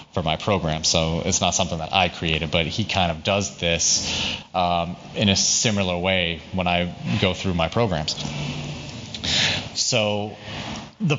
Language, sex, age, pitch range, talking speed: English, male, 30-49, 90-110 Hz, 155 wpm